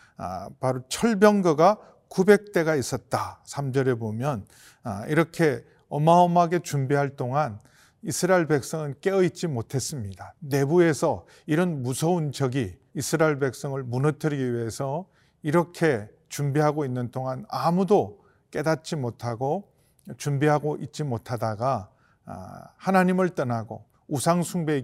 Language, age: Korean, 40-59